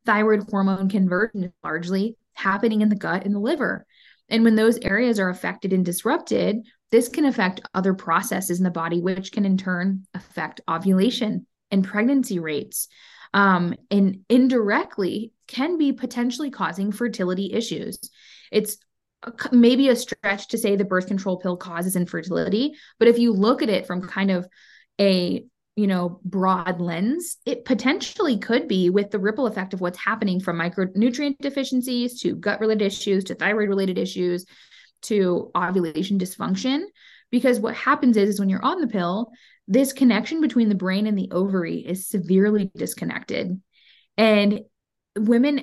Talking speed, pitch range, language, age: 160 wpm, 190-240 Hz, English, 20-39